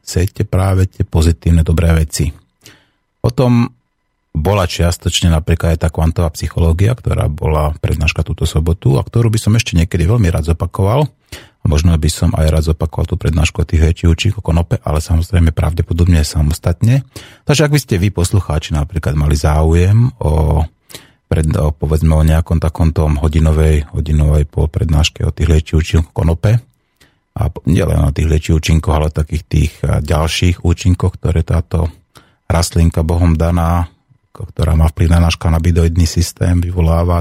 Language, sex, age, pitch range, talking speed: Slovak, male, 30-49, 80-100 Hz, 150 wpm